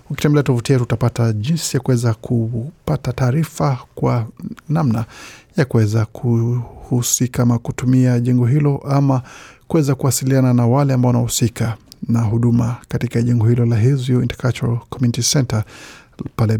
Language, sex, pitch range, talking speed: Swahili, male, 120-135 Hz, 125 wpm